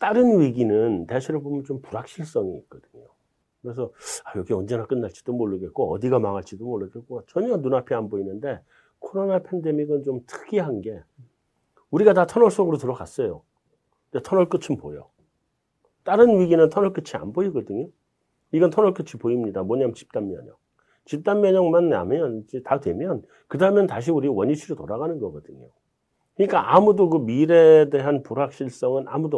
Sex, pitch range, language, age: male, 115-170 Hz, Korean, 40-59